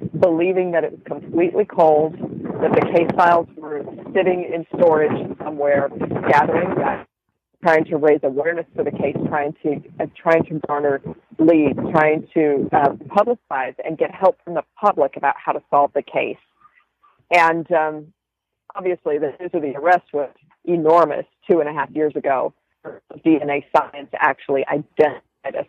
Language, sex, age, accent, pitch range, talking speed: English, female, 40-59, American, 145-190 Hz, 155 wpm